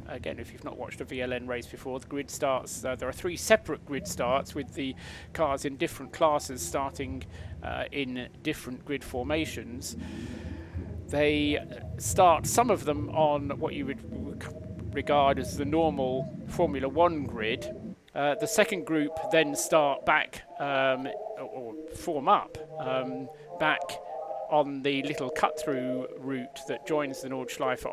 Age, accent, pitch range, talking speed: 40-59, British, 130-155 Hz, 150 wpm